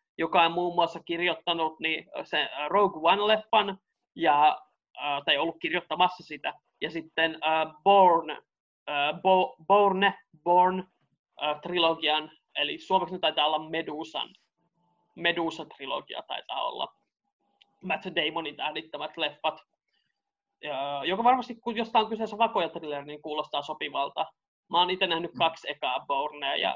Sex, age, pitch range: male, 20-39, 160-200 Hz